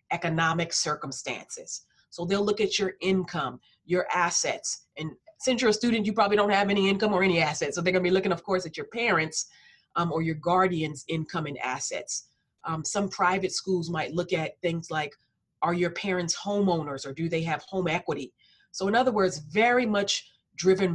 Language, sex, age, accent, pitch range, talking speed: English, female, 30-49, American, 155-185 Hz, 190 wpm